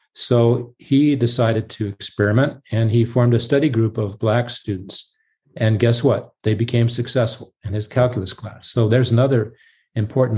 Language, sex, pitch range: English, male, 105-125 Hz